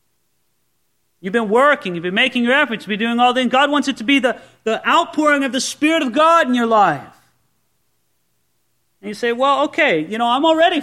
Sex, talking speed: male, 210 wpm